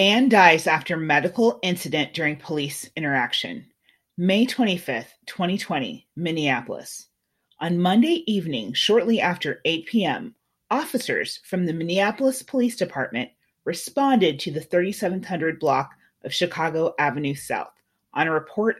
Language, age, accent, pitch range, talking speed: English, 30-49, American, 155-215 Hz, 120 wpm